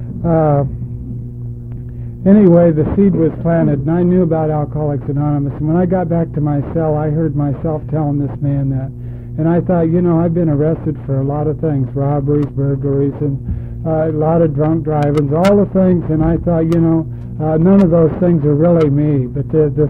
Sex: male